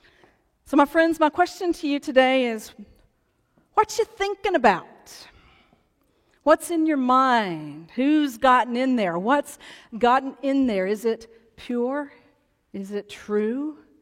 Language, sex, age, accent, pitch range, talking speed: English, female, 40-59, American, 215-285 Hz, 135 wpm